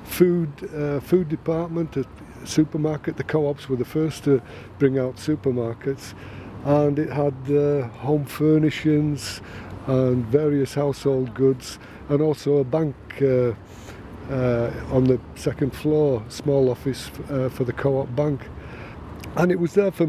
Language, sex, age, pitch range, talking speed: English, male, 50-69, 125-155 Hz, 145 wpm